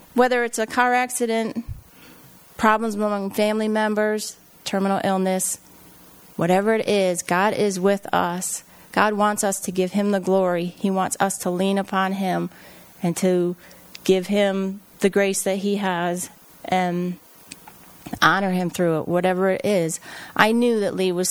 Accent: American